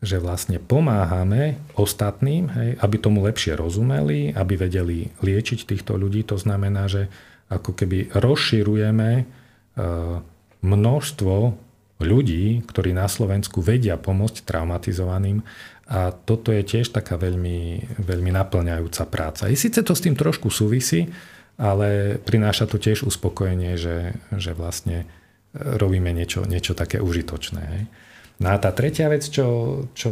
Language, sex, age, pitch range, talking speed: Slovak, male, 40-59, 90-115 Hz, 130 wpm